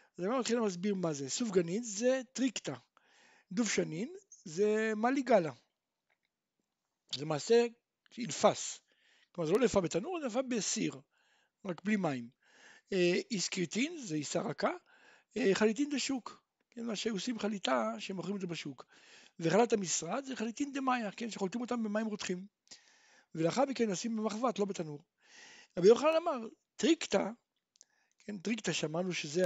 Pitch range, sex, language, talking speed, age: 185-270 Hz, male, Hebrew, 90 wpm, 60-79